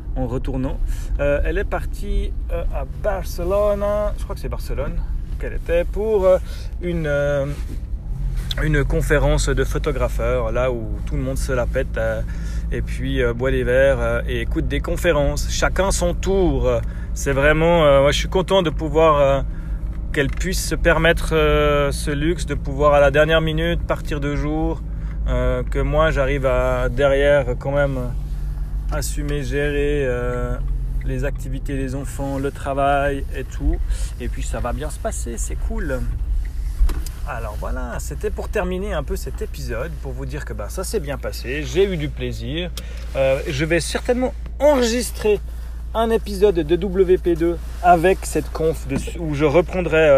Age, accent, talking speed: 30-49, French, 165 wpm